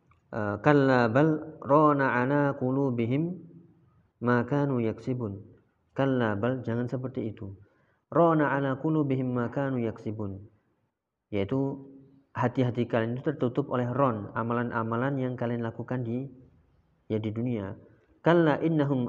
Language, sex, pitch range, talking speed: Indonesian, male, 105-130 Hz, 105 wpm